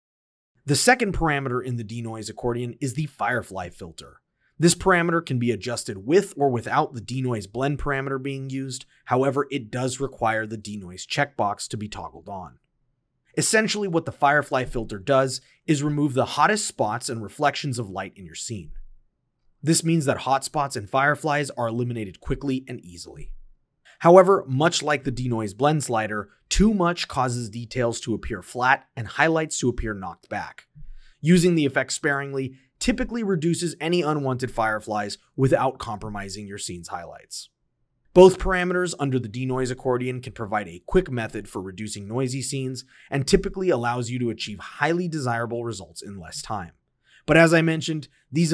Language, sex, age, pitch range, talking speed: English, male, 30-49, 115-150 Hz, 165 wpm